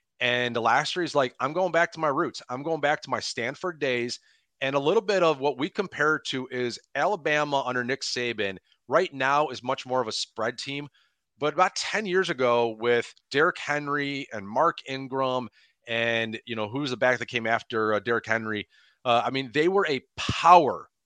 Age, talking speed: 30-49, 205 wpm